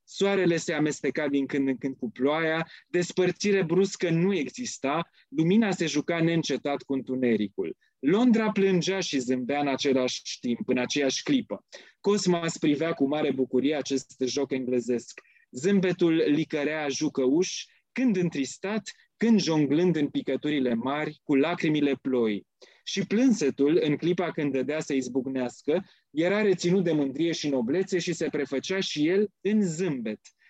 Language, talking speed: English, 140 wpm